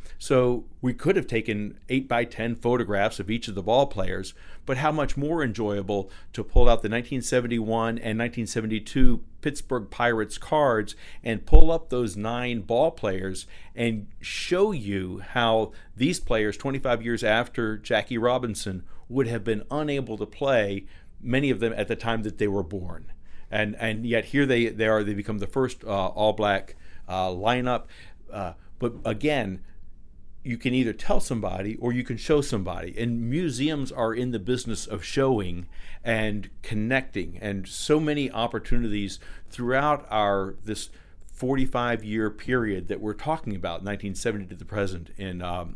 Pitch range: 95-120 Hz